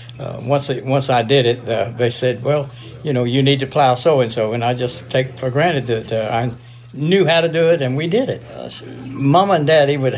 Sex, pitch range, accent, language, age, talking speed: male, 115-130 Hz, American, English, 60-79, 240 wpm